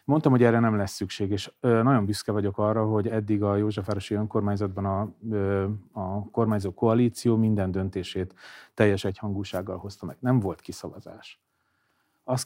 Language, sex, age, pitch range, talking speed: Hungarian, male, 30-49, 100-115 Hz, 145 wpm